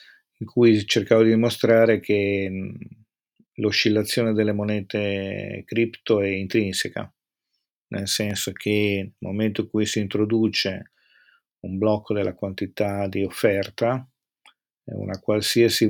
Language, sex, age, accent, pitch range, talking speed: Italian, male, 40-59, native, 100-110 Hz, 110 wpm